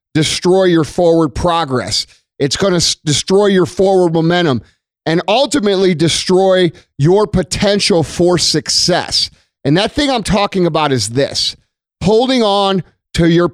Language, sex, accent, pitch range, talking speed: English, male, American, 145-185 Hz, 135 wpm